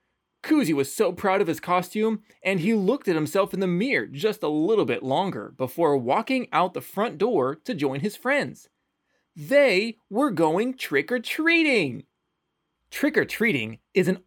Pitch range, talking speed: 160-245 Hz, 155 wpm